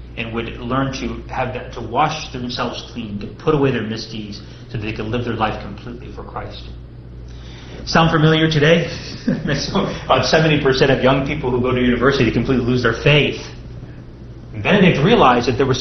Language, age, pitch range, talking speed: English, 30-49, 110-145 Hz, 180 wpm